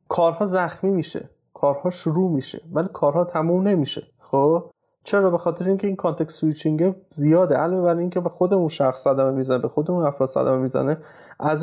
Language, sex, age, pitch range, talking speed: Persian, male, 30-49, 140-170 Hz, 190 wpm